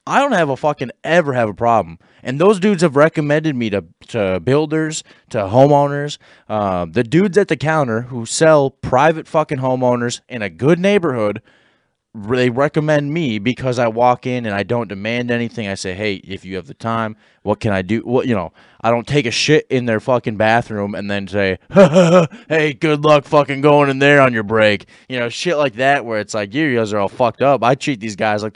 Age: 20-39